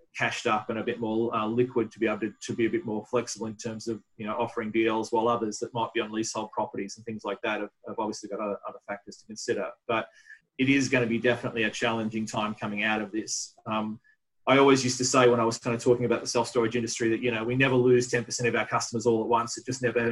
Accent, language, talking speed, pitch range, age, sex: Australian, English, 275 wpm, 110-120 Hz, 30-49, male